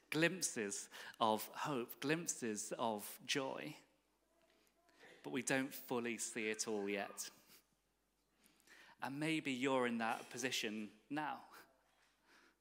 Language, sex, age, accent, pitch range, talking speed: English, male, 30-49, British, 115-140 Hz, 100 wpm